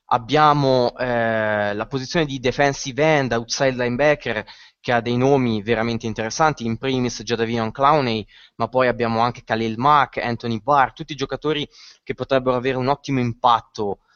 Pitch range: 115-150 Hz